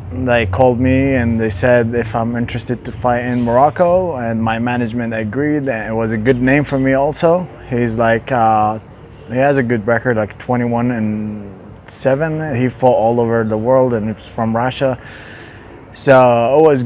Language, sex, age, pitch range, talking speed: English, male, 20-39, 115-135 Hz, 180 wpm